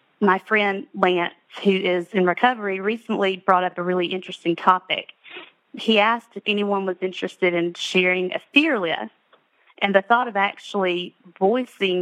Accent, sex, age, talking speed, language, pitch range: American, female, 30-49, 155 wpm, English, 180-200 Hz